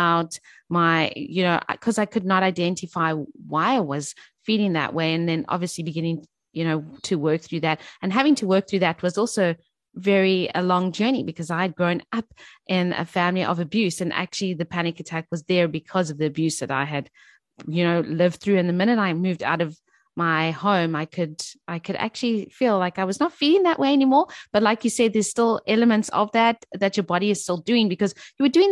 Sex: female